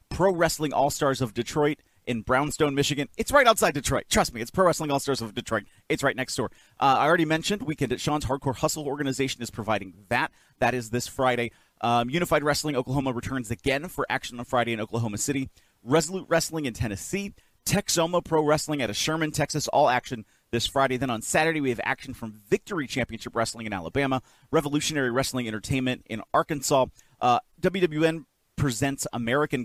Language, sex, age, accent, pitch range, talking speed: English, male, 30-49, American, 120-150 Hz, 180 wpm